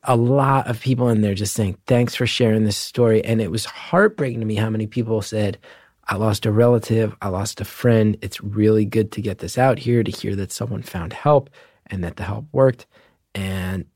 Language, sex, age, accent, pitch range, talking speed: English, male, 30-49, American, 105-130 Hz, 220 wpm